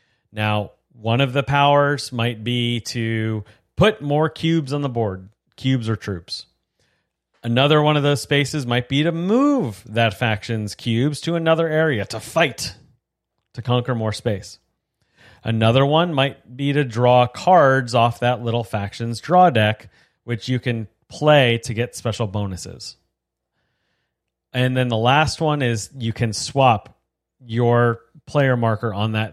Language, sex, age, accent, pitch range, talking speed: English, male, 30-49, American, 110-140 Hz, 150 wpm